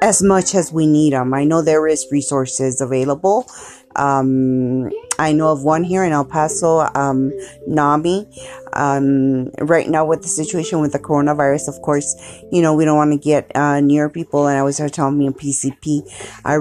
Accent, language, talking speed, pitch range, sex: American, English, 190 wpm, 135-160 Hz, female